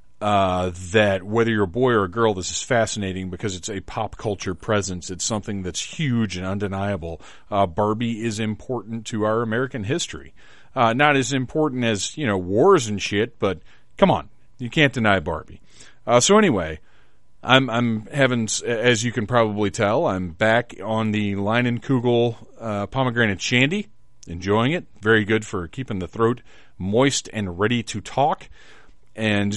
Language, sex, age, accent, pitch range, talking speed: English, male, 40-59, American, 100-125 Hz, 170 wpm